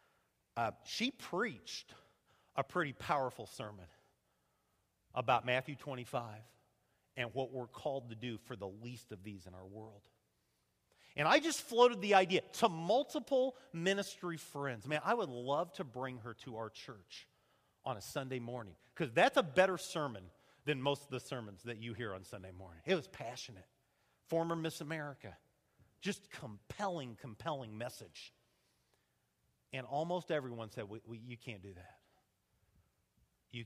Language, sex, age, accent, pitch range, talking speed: English, male, 40-59, American, 115-165 Hz, 150 wpm